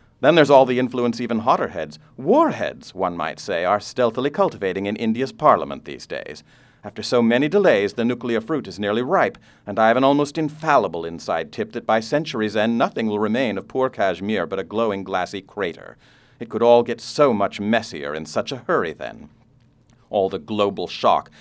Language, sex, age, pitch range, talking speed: English, male, 50-69, 85-120 Hz, 195 wpm